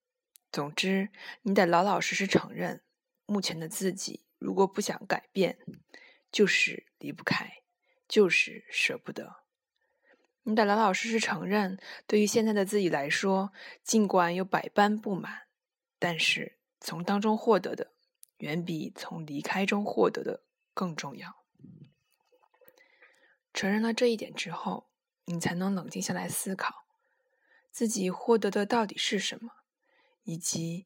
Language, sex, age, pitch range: Chinese, female, 20-39, 180-240 Hz